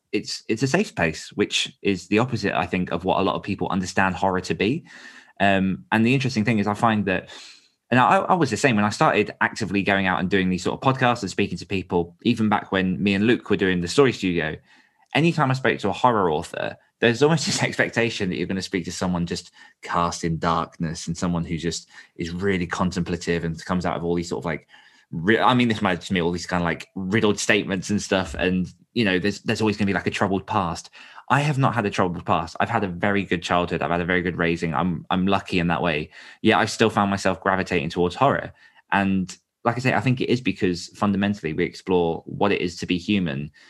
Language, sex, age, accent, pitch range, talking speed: English, male, 20-39, British, 90-110 Hz, 245 wpm